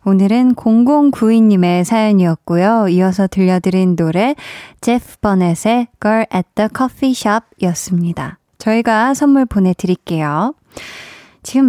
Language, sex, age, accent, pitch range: Korean, female, 20-39, native, 195-275 Hz